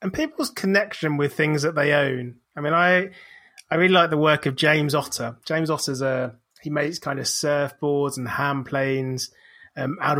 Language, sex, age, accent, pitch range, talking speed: English, male, 30-49, British, 130-155 Hz, 190 wpm